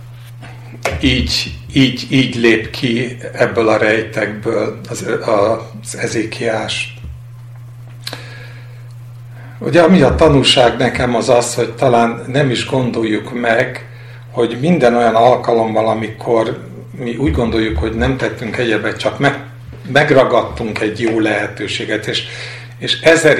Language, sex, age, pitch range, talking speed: Hungarian, male, 50-69, 110-130 Hz, 115 wpm